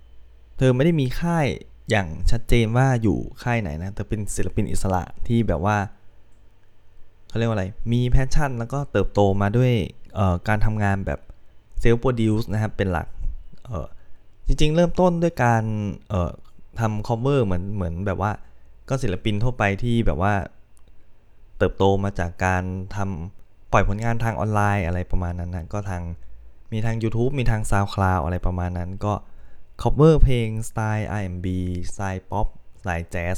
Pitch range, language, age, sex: 95-115 Hz, Thai, 20-39, male